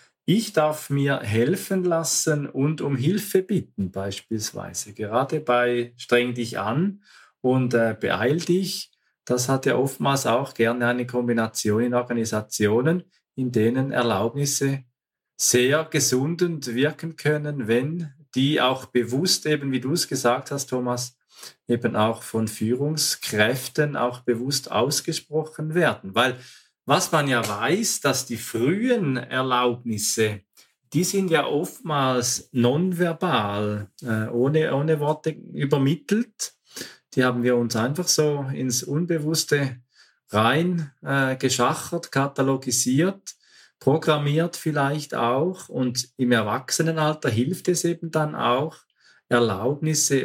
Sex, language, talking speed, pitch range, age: male, German, 115 wpm, 120-155 Hz, 40-59